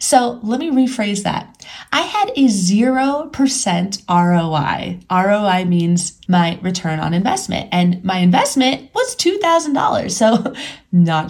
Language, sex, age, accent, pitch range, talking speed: English, female, 20-39, American, 185-260 Hz, 120 wpm